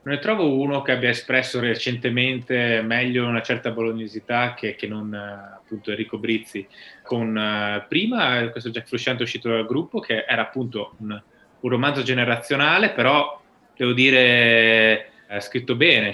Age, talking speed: 20-39, 145 wpm